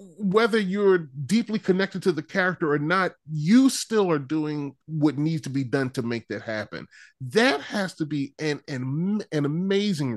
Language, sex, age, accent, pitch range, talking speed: English, male, 30-49, American, 115-170 Hz, 175 wpm